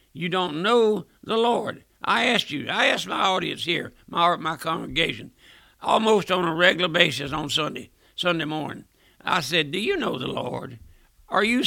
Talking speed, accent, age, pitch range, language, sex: 175 wpm, American, 60-79, 150-200 Hz, English, male